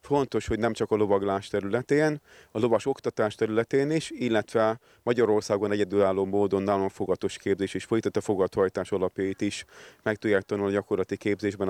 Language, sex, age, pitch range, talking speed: Hungarian, male, 30-49, 100-115 Hz, 150 wpm